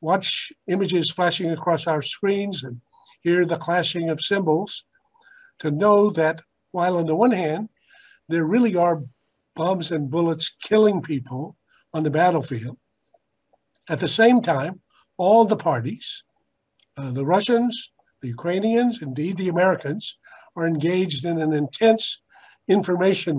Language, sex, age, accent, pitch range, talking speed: English, male, 50-69, American, 155-200 Hz, 135 wpm